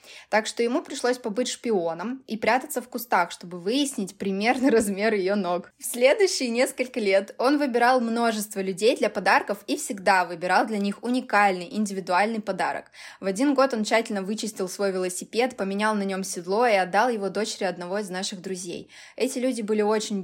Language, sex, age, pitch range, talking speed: Russian, female, 20-39, 195-245 Hz, 170 wpm